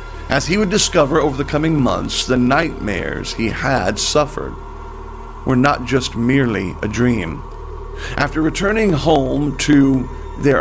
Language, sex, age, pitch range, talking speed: English, male, 40-59, 120-155 Hz, 135 wpm